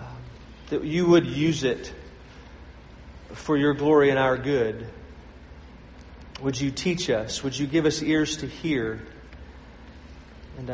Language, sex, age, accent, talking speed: English, male, 40-59, American, 130 wpm